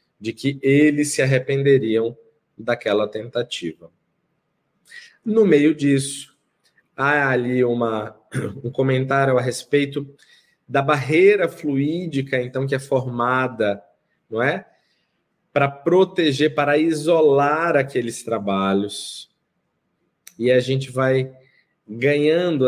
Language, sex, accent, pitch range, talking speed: Portuguese, male, Brazilian, 125-160 Hz, 100 wpm